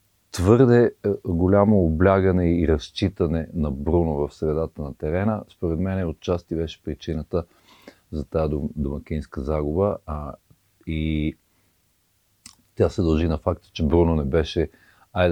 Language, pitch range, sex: Bulgarian, 80-95 Hz, male